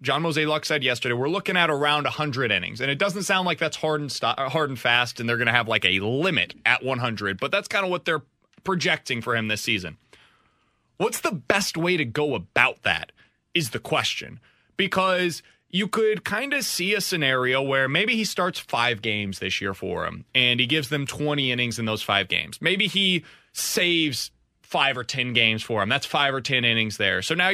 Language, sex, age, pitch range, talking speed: English, male, 30-49, 125-185 Hz, 215 wpm